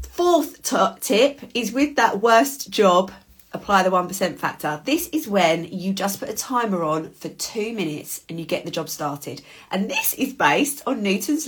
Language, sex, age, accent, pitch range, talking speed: English, female, 30-49, British, 160-230 Hz, 185 wpm